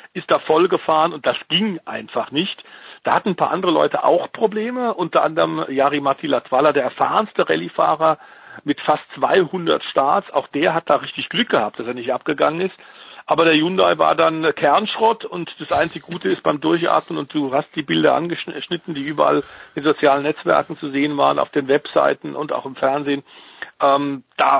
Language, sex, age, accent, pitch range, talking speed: German, male, 50-69, German, 140-175 Hz, 185 wpm